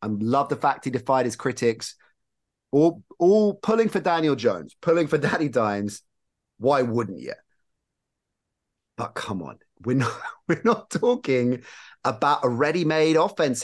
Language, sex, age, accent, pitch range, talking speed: English, male, 30-49, British, 95-130 Hz, 145 wpm